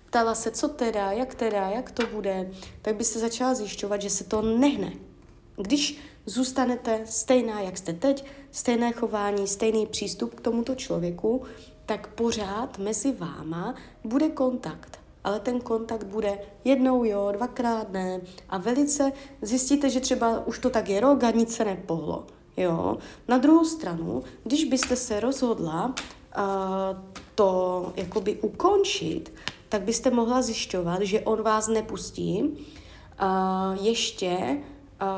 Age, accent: 30-49, native